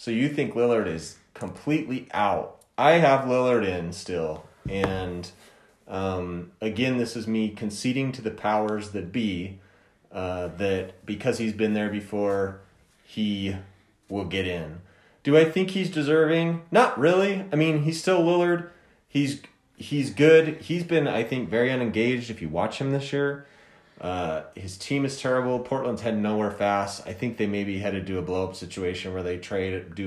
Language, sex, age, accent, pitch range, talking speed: English, male, 30-49, American, 95-135 Hz, 170 wpm